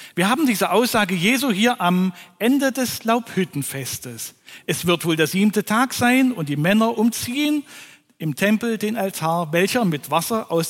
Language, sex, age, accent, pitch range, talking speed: German, male, 40-59, German, 150-225 Hz, 165 wpm